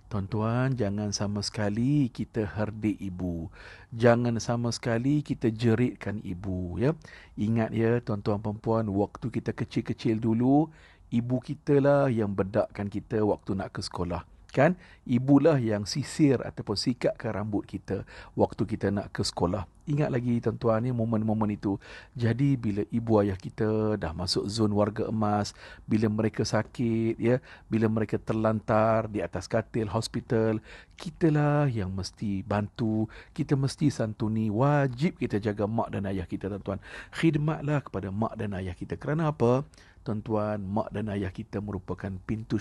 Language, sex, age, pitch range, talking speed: Malay, male, 50-69, 105-125 Hz, 140 wpm